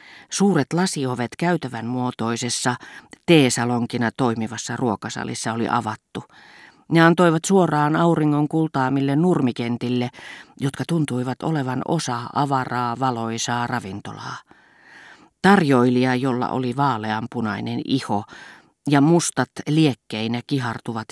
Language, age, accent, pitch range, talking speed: Finnish, 40-59, native, 120-150 Hz, 90 wpm